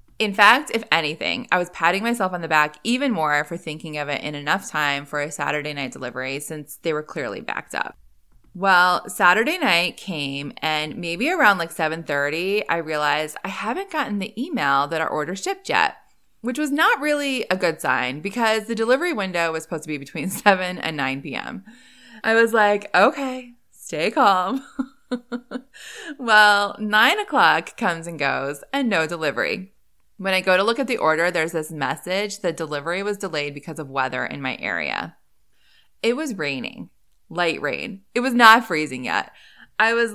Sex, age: female, 20-39